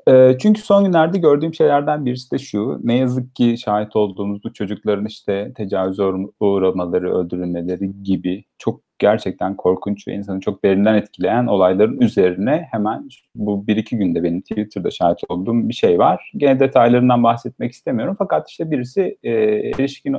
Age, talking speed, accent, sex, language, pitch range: 40-59, 145 wpm, native, male, Turkish, 105-140 Hz